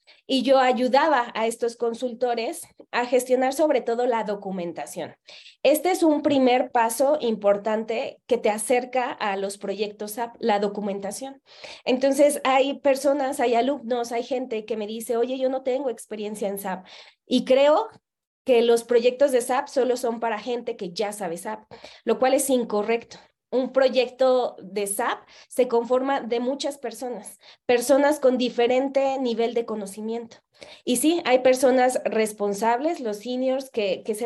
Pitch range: 220-265 Hz